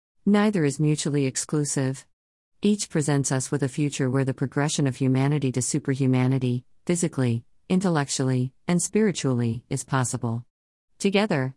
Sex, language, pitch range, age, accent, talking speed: female, English, 130-155 Hz, 50-69, American, 125 wpm